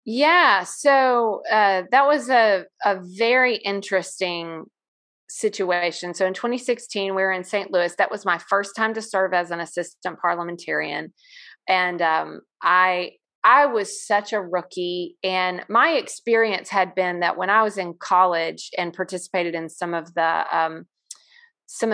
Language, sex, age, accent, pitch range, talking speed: English, female, 30-49, American, 175-205 Hz, 155 wpm